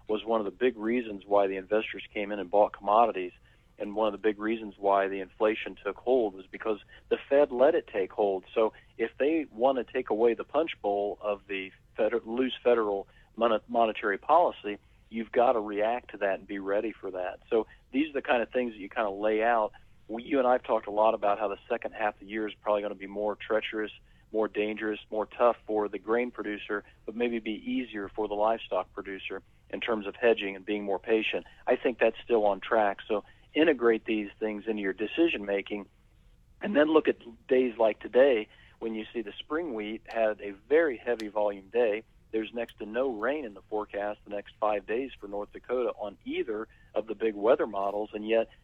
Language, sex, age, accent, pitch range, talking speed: English, male, 40-59, American, 105-115 Hz, 215 wpm